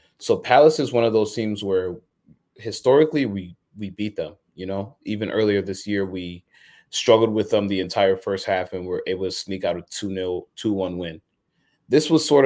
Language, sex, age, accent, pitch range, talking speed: English, male, 20-39, American, 95-110 Hz, 200 wpm